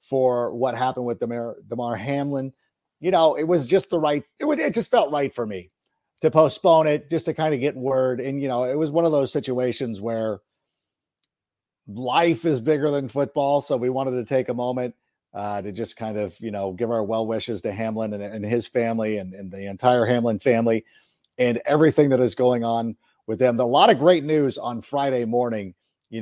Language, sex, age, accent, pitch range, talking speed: English, male, 50-69, American, 120-150 Hz, 215 wpm